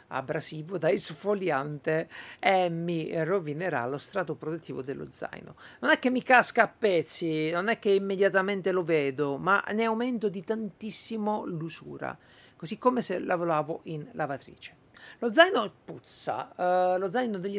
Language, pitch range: Italian, 140-185 Hz